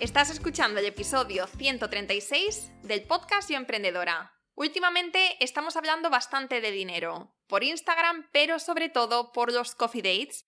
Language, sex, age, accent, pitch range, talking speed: Spanish, female, 20-39, Spanish, 225-285 Hz, 135 wpm